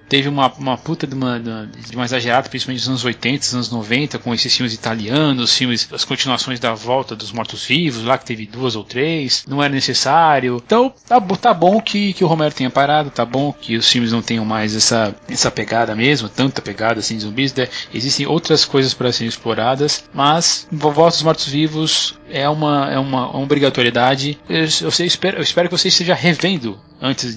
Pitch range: 115-145 Hz